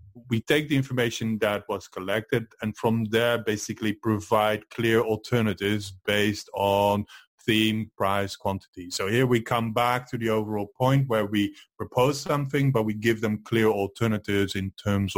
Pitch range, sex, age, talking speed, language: 100-120 Hz, male, 30-49, 160 wpm, English